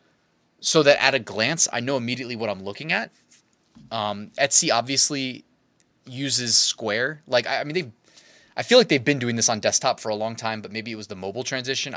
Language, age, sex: English, 20-39, male